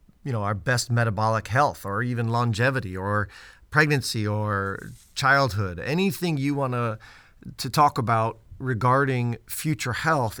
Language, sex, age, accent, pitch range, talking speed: English, male, 40-59, American, 115-145 Hz, 125 wpm